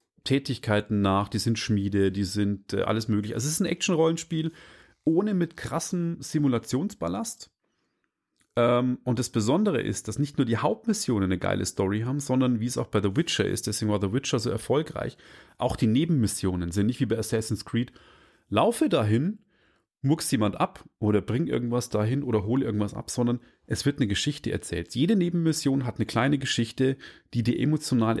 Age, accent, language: 30-49, German, German